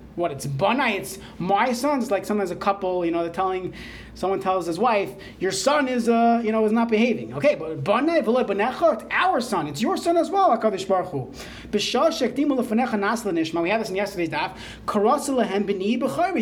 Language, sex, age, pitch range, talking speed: English, male, 30-49, 195-255 Hz, 185 wpm